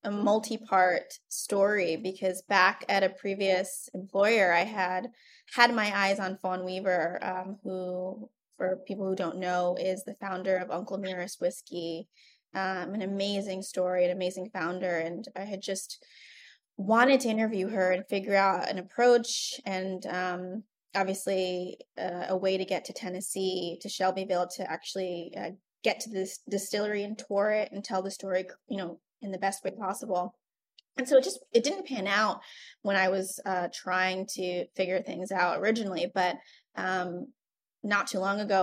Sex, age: female, 20-39